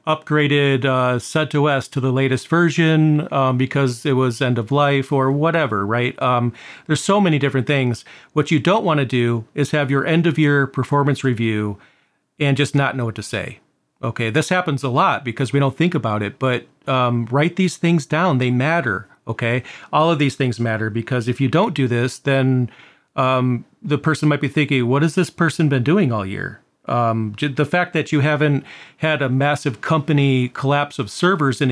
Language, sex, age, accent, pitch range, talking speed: English, male, 40-59, American, 125-150 Hz, 200 wpm